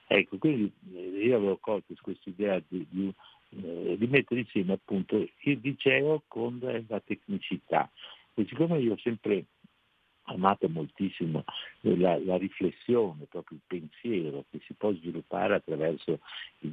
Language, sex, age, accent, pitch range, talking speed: Italian, male, 60-79, native, 80-105 Hz, 135 wpm